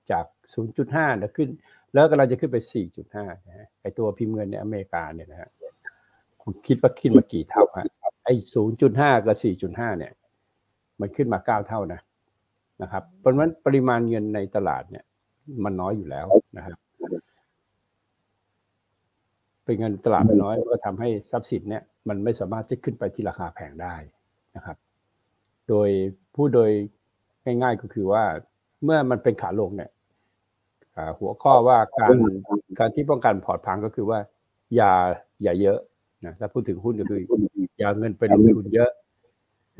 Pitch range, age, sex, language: 105-135 Hz, 60-79, male, Thai